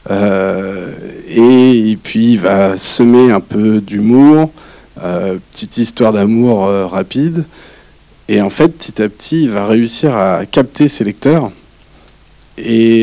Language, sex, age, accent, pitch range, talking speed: French, male, 40-59, French, 100-125 Hz, 120 wpm